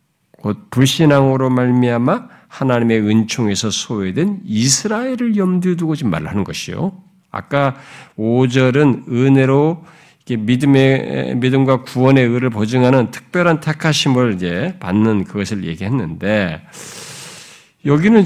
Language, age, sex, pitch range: Korean, 50-69, male, 120-175 Hz